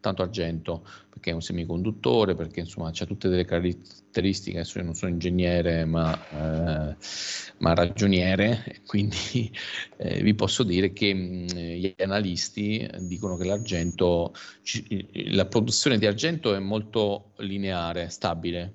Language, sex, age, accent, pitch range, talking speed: Italian, male, 40-59, native, 85-100 Hz, 135 wpm